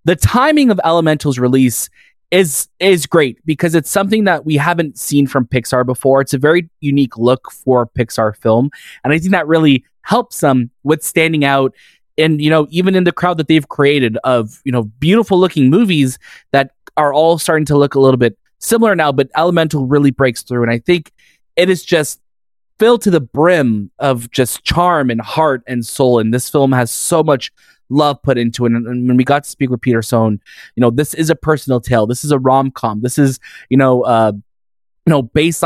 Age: 20-39